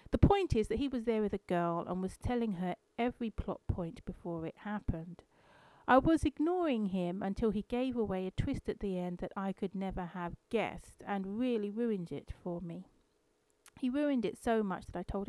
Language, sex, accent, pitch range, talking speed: English, female, British, 180-245 Hz, 210 wpm